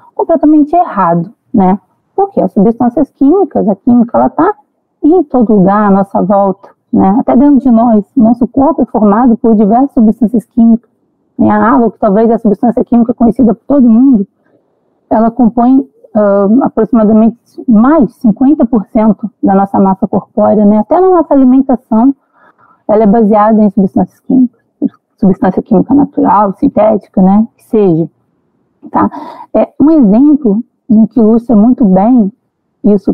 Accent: Brazilian